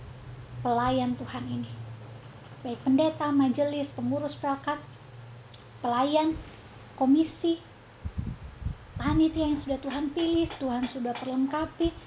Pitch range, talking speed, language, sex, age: 240-285 Hz, 90 wpm, Indonesian, female, 20-39